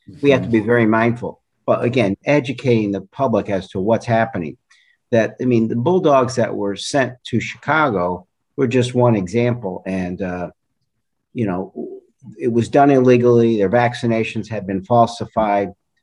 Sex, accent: male, American